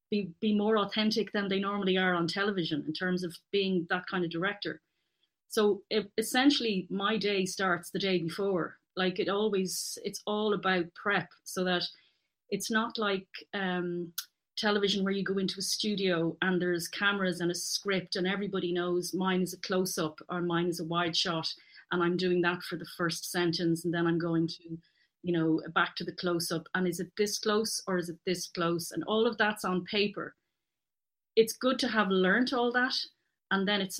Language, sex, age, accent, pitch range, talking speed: English, female, 30-49, Irish, 175-205 Hz, 200 wpm